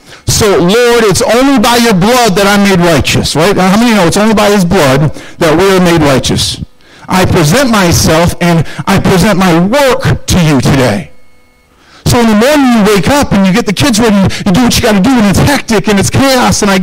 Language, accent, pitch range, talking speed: English, American, 130-205 Hz, 230 wpm